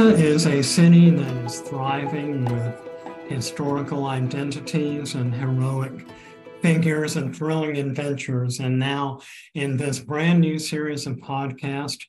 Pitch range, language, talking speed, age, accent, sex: 130-150 Hz, English, 120 wpm, 50-69, American, male